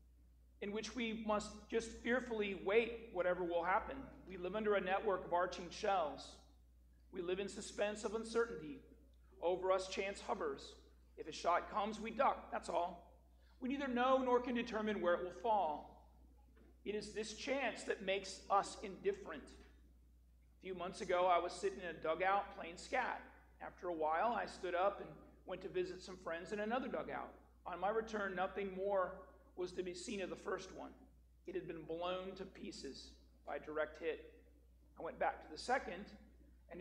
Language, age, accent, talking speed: English, 40-59, American, 180 wpm